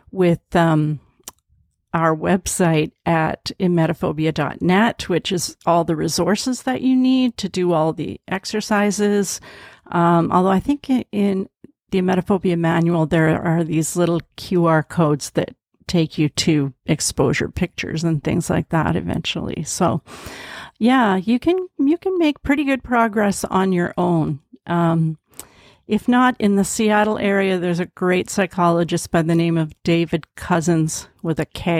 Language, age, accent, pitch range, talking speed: English, 50-69, American, 165-215 Hz, 140 wpm